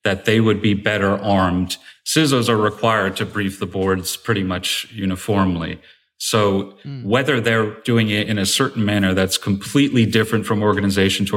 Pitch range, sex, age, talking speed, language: 95-105 Hz, male, 30-49, 165 wpm, English